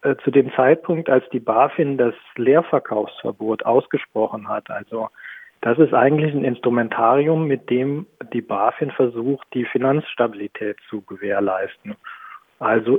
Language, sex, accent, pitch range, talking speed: German, male, German, 120-155 Hz, 120 wpm